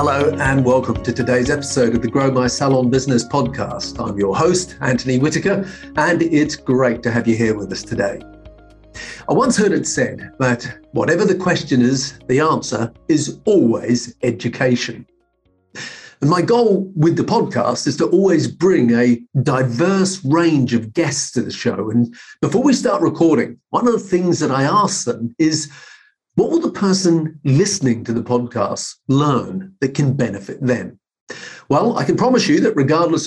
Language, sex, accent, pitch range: English, male, British, 125-175 Hz